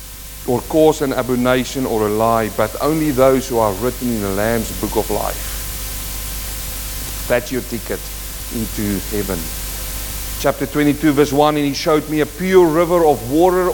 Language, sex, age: English, male, 50-69